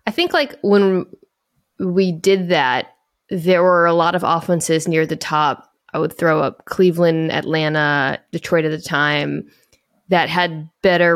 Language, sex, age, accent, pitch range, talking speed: English, female, 20-39, American, 155-195 Hz, 155 wpm